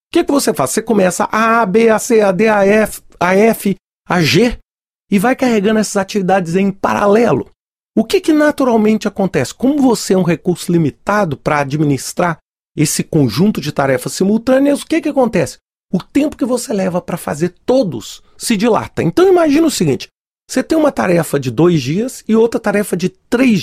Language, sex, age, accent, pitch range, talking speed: Portuguese, male, 40-59, Brazilian, 185-260 Hz, 185 wpm